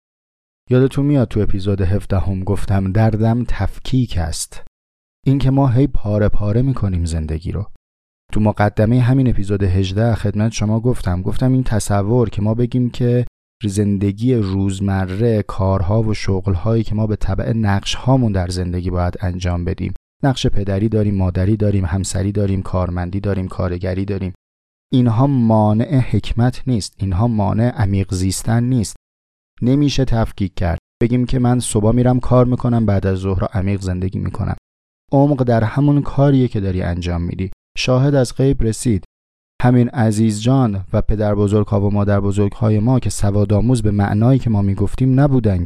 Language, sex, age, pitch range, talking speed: Persian, male, 30-49, 95-120 Hz, 155 wpm